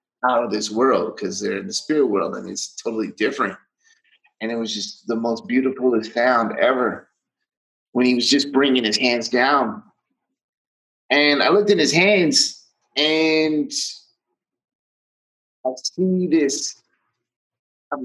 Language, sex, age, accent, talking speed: English, male, 30-49, American, 140 wpm